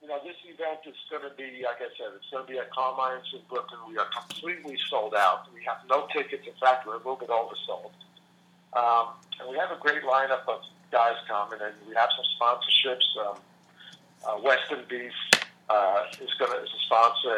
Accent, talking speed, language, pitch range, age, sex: American, 210 wpm, English, 120-150 Hz, 50-69, male